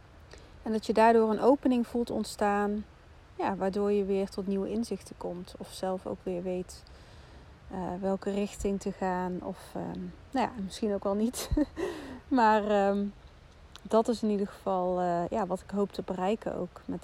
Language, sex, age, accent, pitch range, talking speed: Dutch, female, 30-49, Dutch, 190-220 Hz, 155 wpm